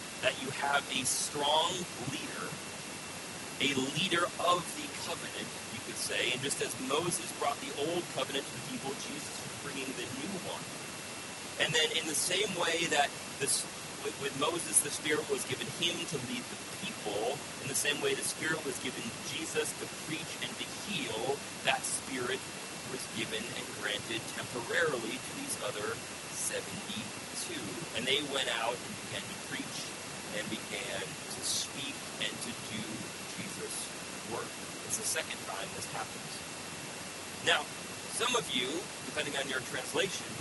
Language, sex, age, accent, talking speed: English, male, 40-59, American, 155 wpm